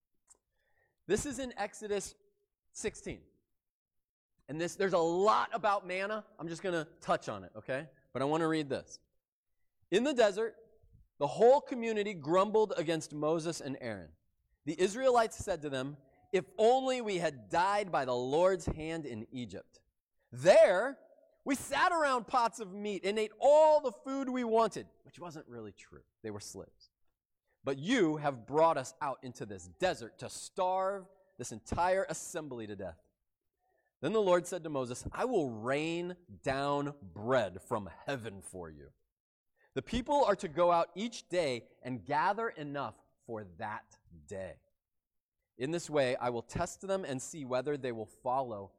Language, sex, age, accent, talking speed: English, male, 30-49, American, 160 wpm